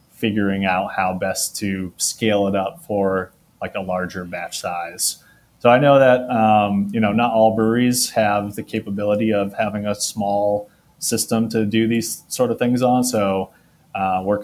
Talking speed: 175 wpm